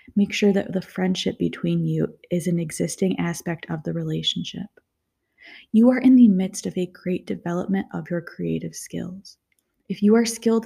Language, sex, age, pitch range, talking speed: English, female, 20-39, 175-210 Hz, 175 wpm